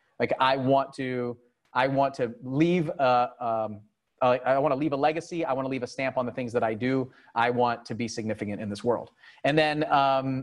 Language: English